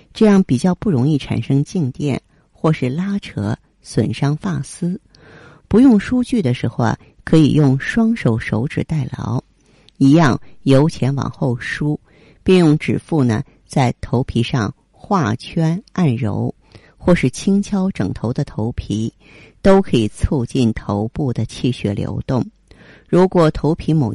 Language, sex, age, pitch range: Chinese, female, 50-69, 120-160 Hz